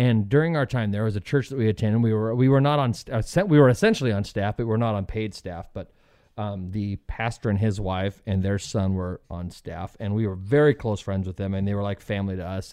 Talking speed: 275 wpm